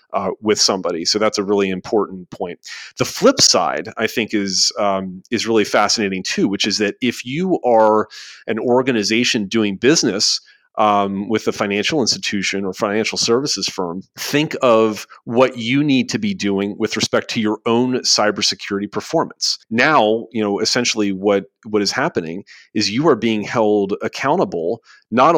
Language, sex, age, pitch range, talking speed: English, male, 40-59, 100-115 Hz, 165 wpm